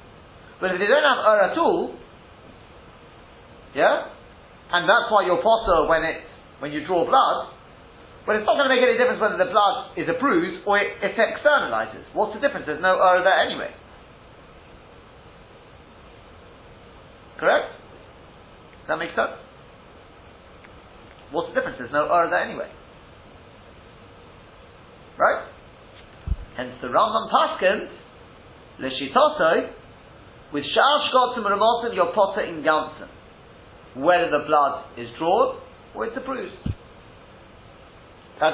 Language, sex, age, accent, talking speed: English, male, 40-59, British, 130 wpm